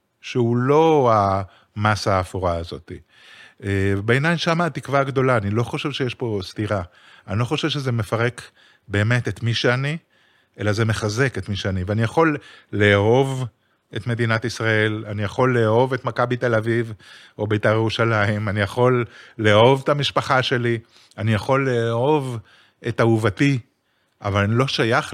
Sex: male